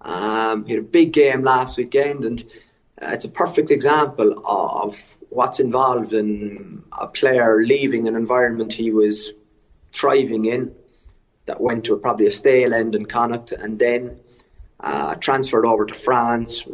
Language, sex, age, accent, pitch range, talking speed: English, male, 30-49, British, 110-140 Hz, 150 wpm